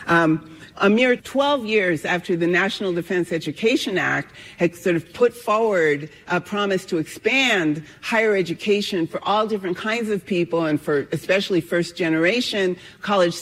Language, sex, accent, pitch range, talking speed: English, female, American, 155-200 Hz, 150 wpm